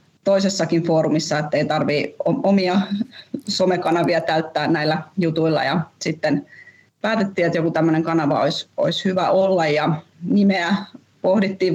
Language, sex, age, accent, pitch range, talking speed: Finnish, female, 30-49, native, 160-190 Hz, 115 wpm